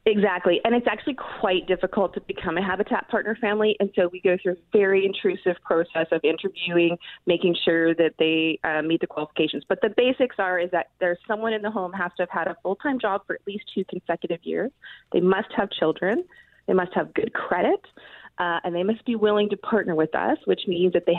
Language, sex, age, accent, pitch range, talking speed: English, female, 30-49, American, 175-230 Hz, 225 wpm